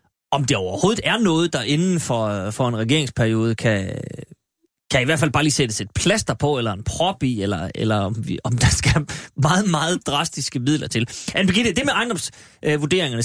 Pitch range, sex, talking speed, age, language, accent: 135-195 Hz, male, 190 wpm, 30-49, Danish, native